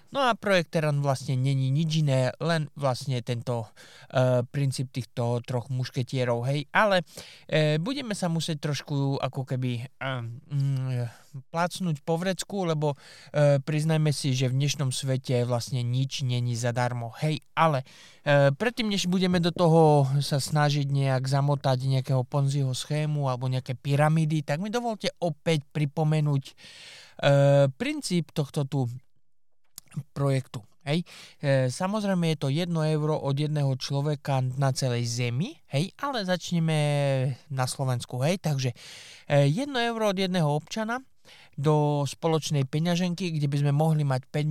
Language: Slovak